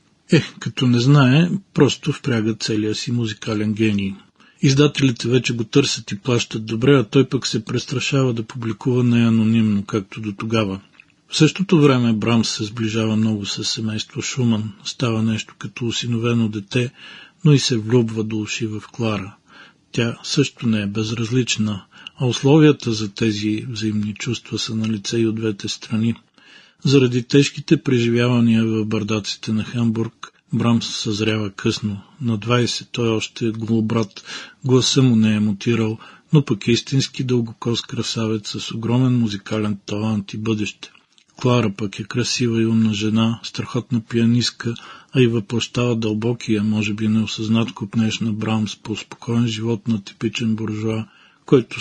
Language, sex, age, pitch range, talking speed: Bulgarian, male, 40-59, 110-125 Hz, 150 wpm